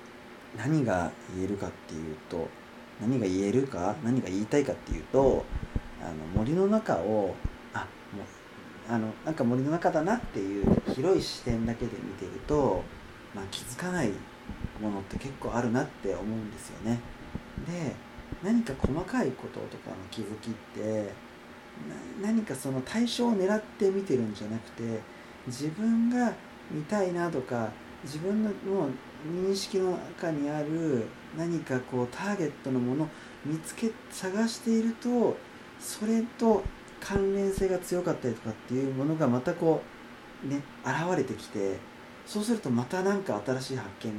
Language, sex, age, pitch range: Japanese, male, 40-59, 110-180 Hz